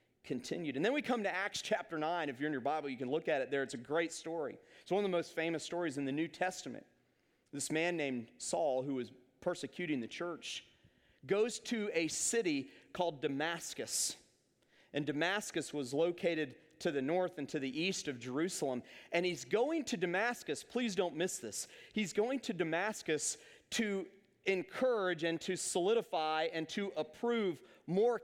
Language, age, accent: English, 40-59, American